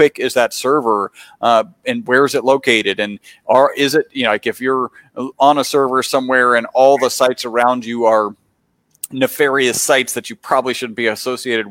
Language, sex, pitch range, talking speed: English, male, 115-150 Hz, 190 wpm